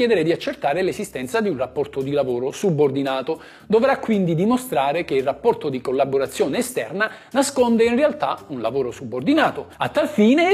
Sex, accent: male, native